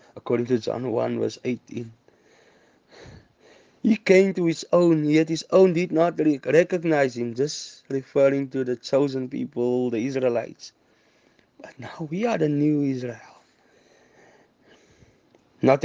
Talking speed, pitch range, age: 135 wpm, 115-130 Hz, 20-39